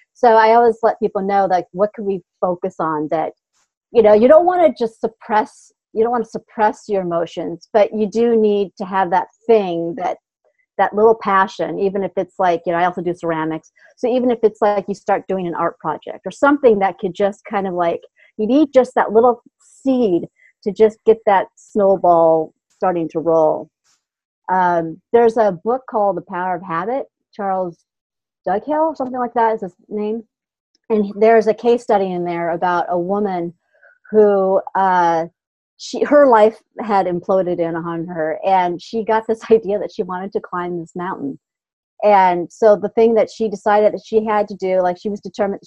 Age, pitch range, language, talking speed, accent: 40-59, 180-225 Hz, English, 195 wpm, American